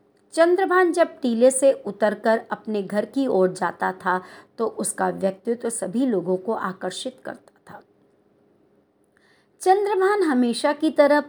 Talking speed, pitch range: 135 wpm, 195-270 Hz